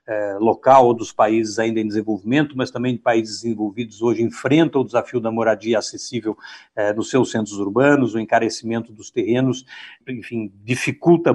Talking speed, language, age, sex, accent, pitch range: 160 wpm, Portuguese, 60-79, male, Brazilian, 120-160 Hz